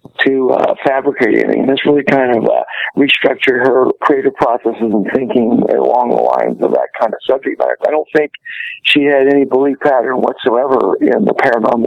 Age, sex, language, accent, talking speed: 60-79, male, English, American, 185 wpm